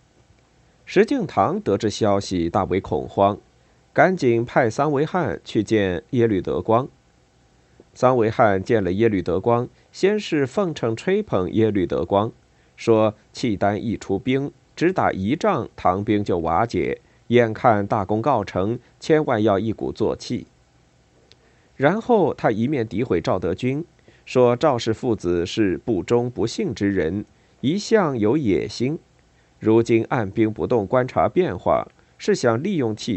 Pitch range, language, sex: 100-145 Hz, Chinese, male